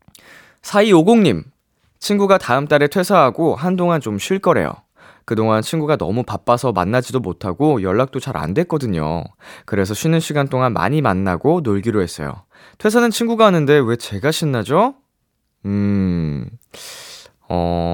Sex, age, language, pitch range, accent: male, 20-39, Korean, 105-155 Hz, native